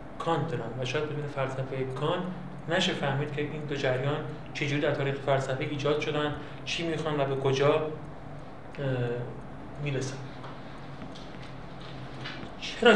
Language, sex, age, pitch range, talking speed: Persian, male, 30-49, 135-160 Hz, 125 wpm